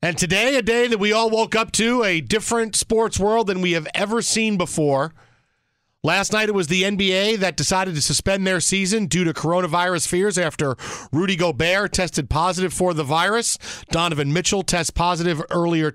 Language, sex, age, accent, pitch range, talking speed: English, male, 40-59, American, 155-195 Hz, 185 wpm